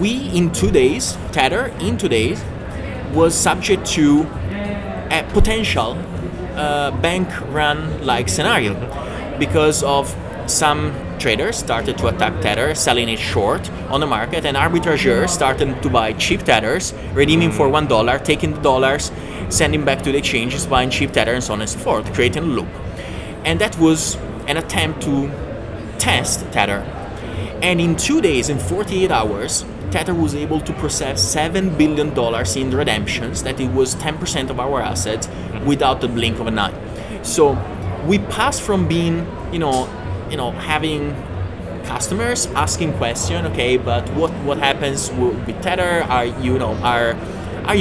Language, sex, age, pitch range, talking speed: English, male, 30-49, 105-160 Hz, 155 wpm